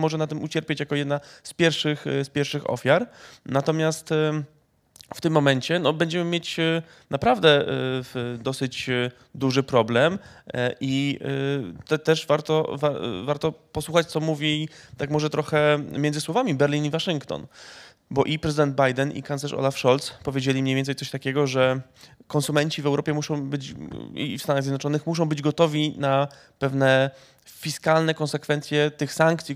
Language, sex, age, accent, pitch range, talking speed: Polish, male, 20-39, native, 135-160 Hz, 135 wpm